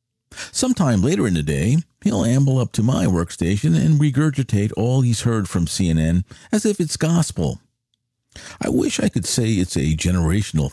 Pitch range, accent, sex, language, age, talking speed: 95-125 Hz, American, male, English, 50-69, 170 wpm